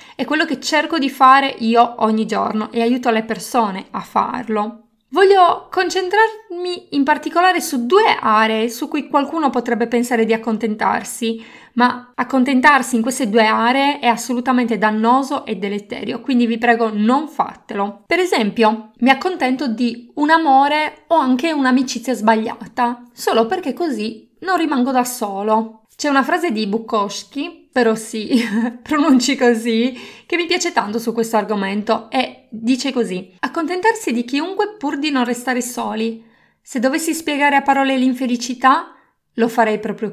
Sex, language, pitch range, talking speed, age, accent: female, Italian, 220-275 Hz, 150 wpm, 20-39, native